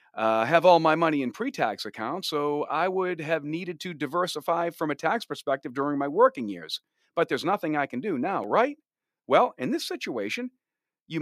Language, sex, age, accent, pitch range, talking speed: English, male, 40-59, American, 110-165 Hz, 195 wpm